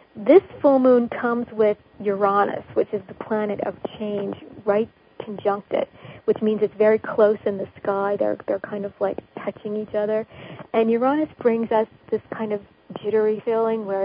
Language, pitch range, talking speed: English, 205-225 Hz, 175 wpm